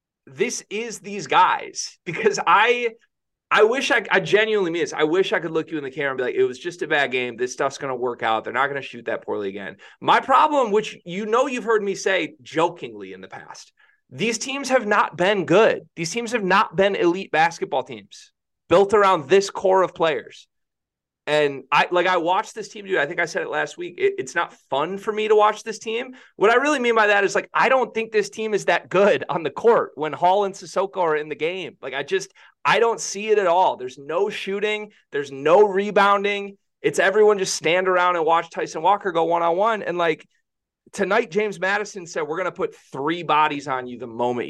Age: 30-49